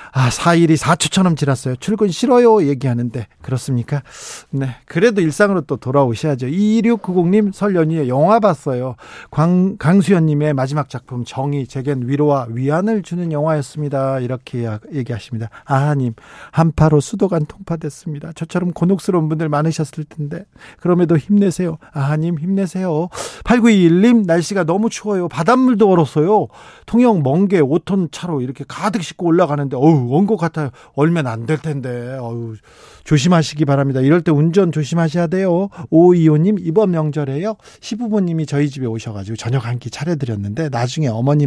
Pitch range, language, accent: 135-175 Hz, Korean, native